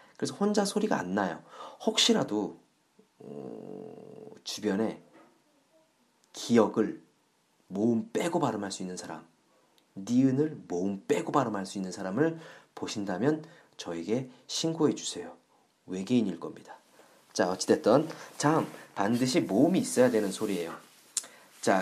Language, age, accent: Korean, 40-59, native